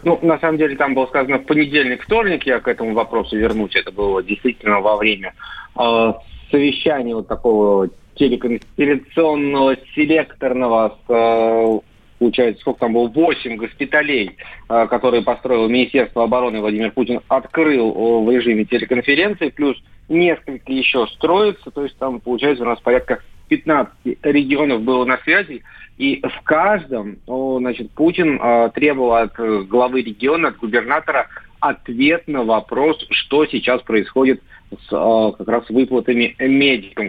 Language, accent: Russian, native